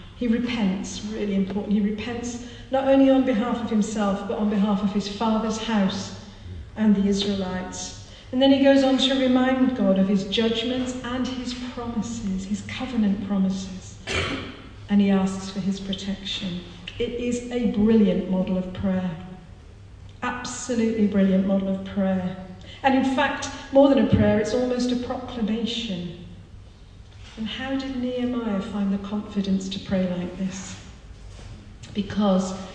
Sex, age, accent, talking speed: female, 50-69, British, 145 wpm